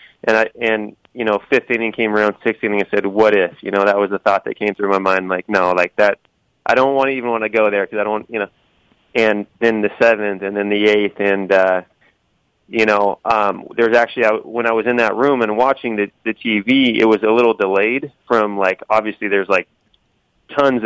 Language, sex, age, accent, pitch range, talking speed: English, male, 30-49, American, 100-110 Hz, 235 wpm